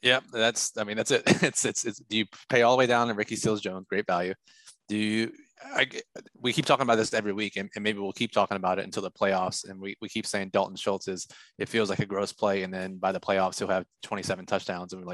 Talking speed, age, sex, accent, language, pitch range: 270 wpm, 20-39, male, American, English, 95-110 Hz